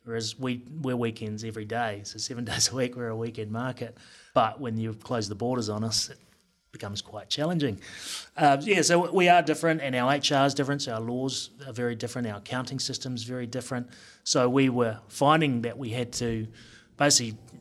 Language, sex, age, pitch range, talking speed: English, male, 30-49, 110-135 Hz, 200 wpm